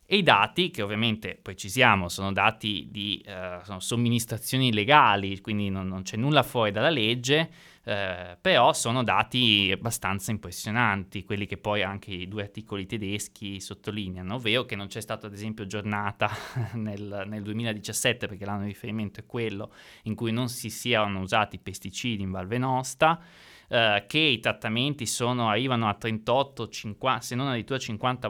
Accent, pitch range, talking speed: native, 100-125 Hz, 160 wpm